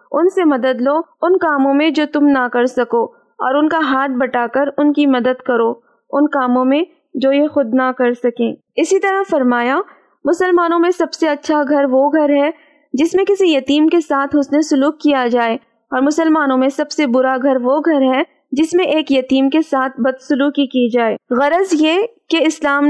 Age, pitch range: 20-39, 260-310 Hz